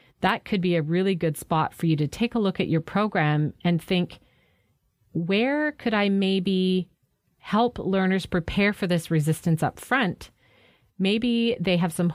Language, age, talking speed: English, 40-59, 170 wpm